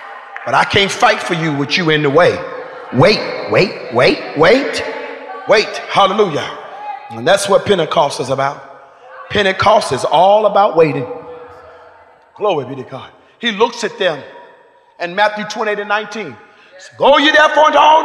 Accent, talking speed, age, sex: American, 155 wpm, 40-59, male